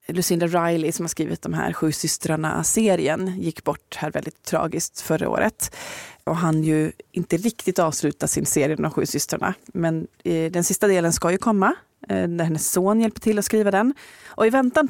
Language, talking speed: Swedish, 190 wpm